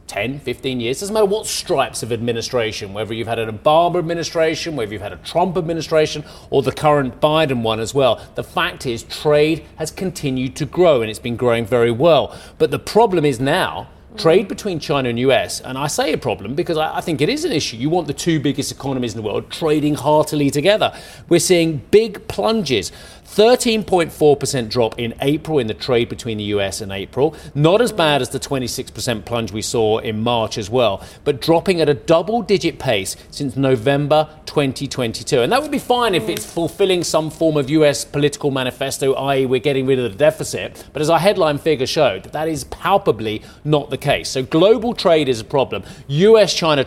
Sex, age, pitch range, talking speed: male, 30-49, 120-165 Hz, 195 wpm